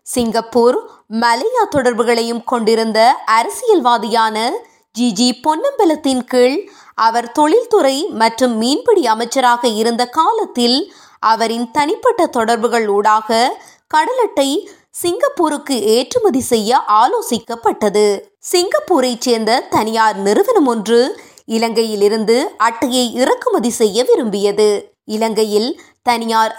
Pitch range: 225-335 Hz